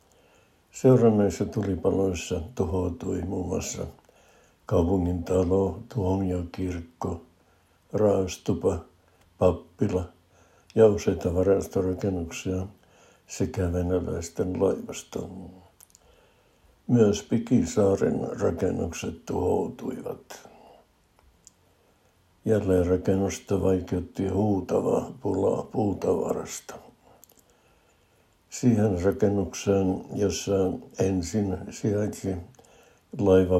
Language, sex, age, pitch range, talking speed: Finnish, male, 60-79, 90-105 Hz, 60 wpm